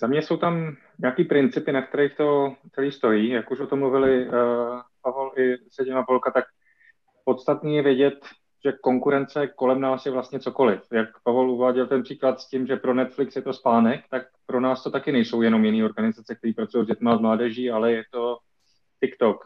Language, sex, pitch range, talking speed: Slovak, male, 120-140 Hz, 195 wpm